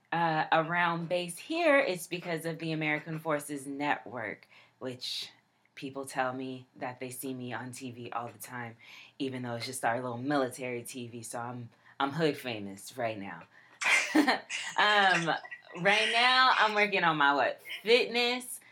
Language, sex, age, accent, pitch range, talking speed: English, female, 20-39, American, 150-185 Hz, 155 wpm